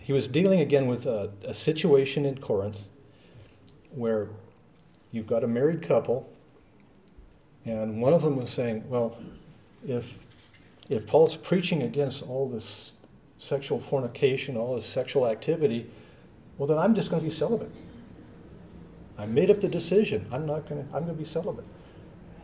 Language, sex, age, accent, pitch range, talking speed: English, male, 50-69, American, 110-150 Hz, 155 wpm